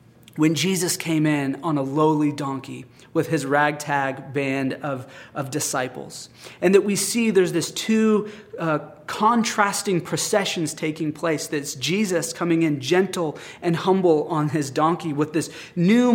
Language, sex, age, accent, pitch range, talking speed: English, male, 30-49, American, 150-185 Hz, 150 wpm